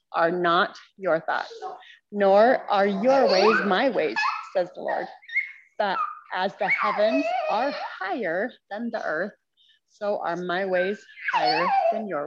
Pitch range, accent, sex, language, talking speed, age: 195-295 Hz, American, female, English, 140 wpm, 20-39